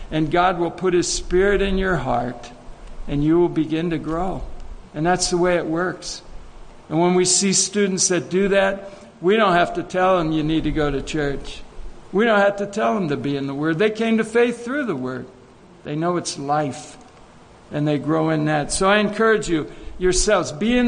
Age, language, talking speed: 60-79, English, 215 wpm